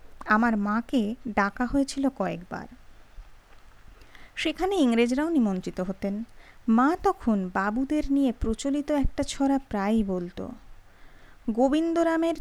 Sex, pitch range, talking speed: female, 210-275 Hz, 90 wpm